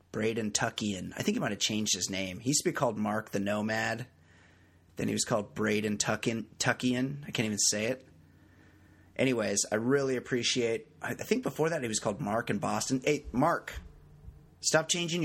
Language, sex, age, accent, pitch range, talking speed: English, male, 30-49, American, 105-130 Hz, 190 wpm